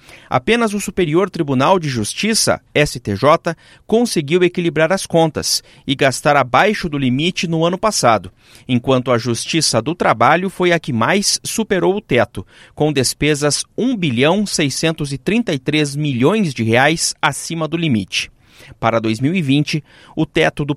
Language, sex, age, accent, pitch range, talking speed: Portuguese, male, 40-59, Brazilian, 130-180 Hz, 130 wpm